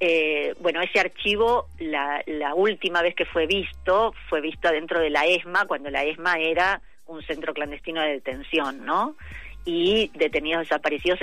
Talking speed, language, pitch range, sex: 160 wpm, Spanish, 155-205 Hz, female